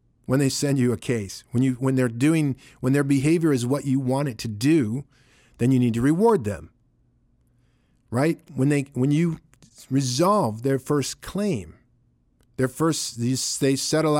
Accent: American